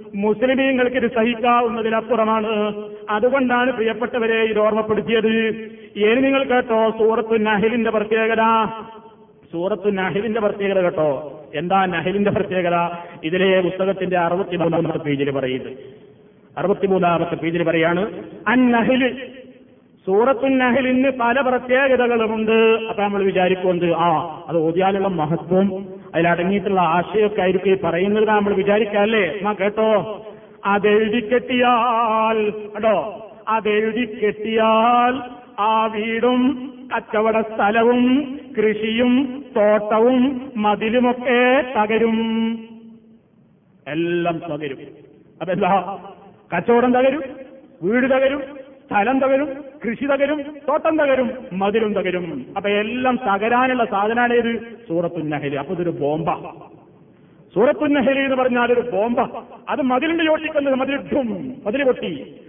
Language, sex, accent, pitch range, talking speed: Malayalam, male, native, 195-250 Hz, 95 wpm